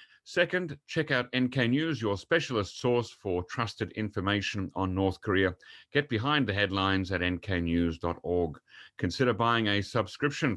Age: 40-59